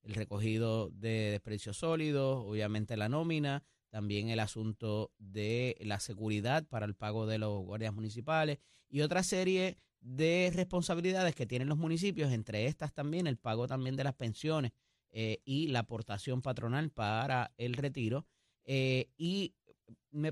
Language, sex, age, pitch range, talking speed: Spanish, male, 30-49, 120-155 Hz, 150 wpm